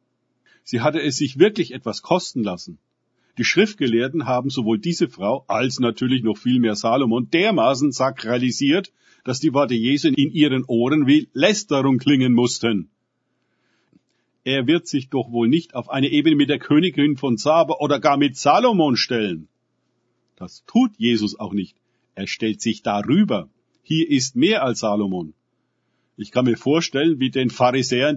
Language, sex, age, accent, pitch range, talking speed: German, male, 50-69, German, 120-160 Hz, 155 wpm